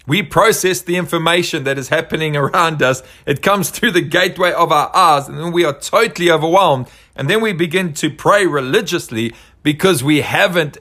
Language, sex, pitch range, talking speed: English, male, 130-175 Hz, 185 wpm